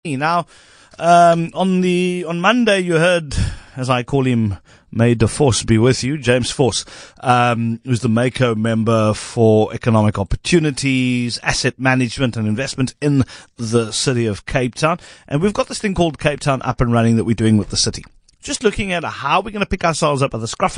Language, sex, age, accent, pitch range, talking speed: English, male, 40-59, British, 110-150 Hz, 195 wpm